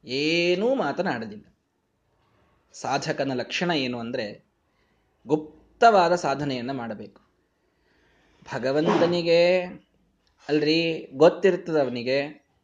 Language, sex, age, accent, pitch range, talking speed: Kannada, male, 20-39, native, 130-200 Hz, 55 wpm